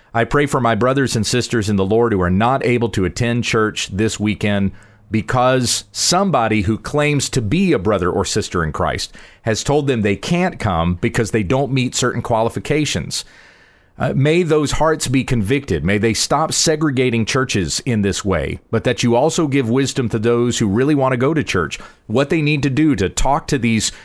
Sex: male